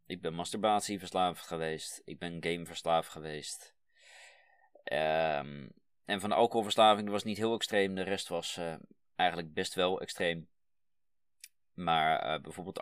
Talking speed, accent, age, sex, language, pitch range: 125 wpm, Dutch, 20-39, male, Dutch, 80-100 Hz